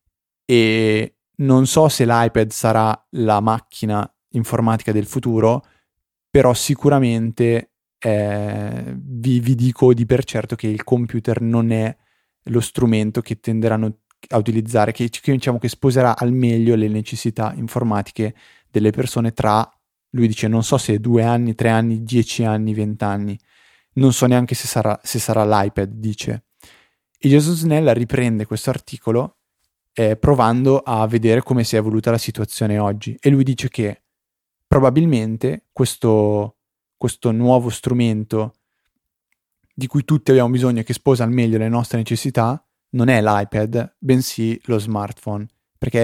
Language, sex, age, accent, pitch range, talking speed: Italian, male, 20-39, native, 110-125 Hz, 140 wpm